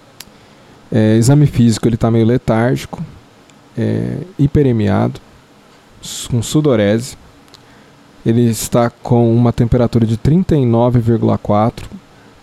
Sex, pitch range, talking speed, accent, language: male, 110-135 Hz, 85 wpm, Brazilian, Portuguese